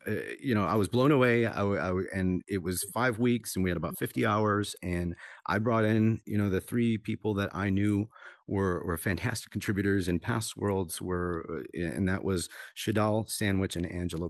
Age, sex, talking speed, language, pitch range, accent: 40-59, male, 190 wpm, English, 90-105 Hz, American